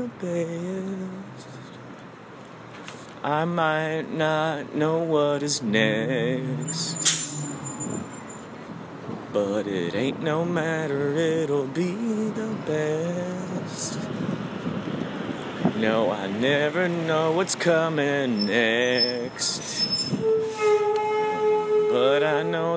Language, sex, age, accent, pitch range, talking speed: English, male, 30-49, American, 145-195 Hz, 70 wpm